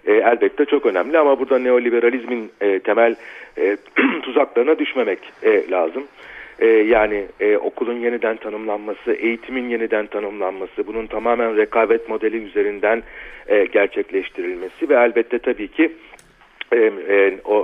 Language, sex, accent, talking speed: Turkish, male, native, 95 wpm